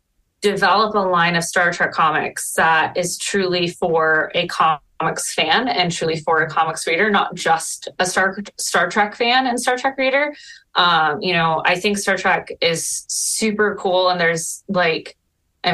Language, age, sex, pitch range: English, 20-39, female, 165-215 Hz